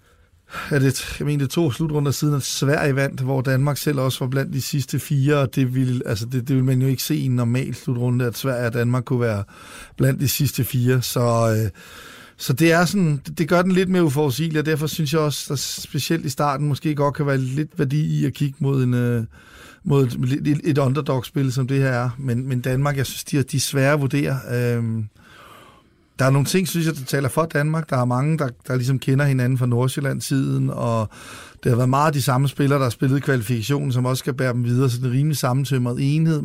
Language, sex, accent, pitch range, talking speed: Danish, male, native, 125-145 Hz, 230 wpm